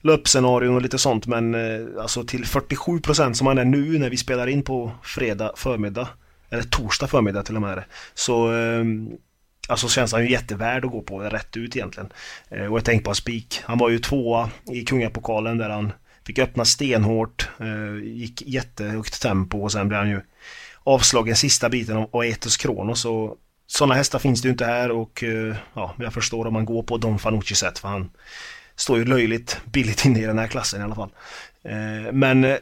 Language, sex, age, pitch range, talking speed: Swedish, male, 30-49, 110-130 Hz, 200 wpm